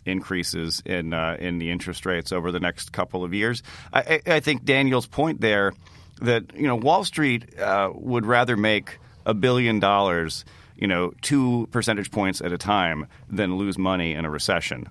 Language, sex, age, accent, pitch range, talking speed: English, male, 40-59, American, 85-115 Hz, 180 wpm